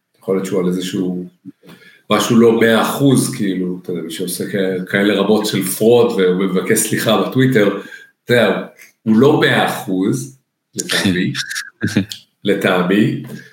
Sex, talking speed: male, 120 wpm